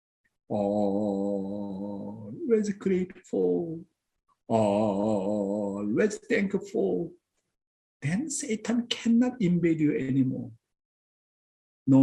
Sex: male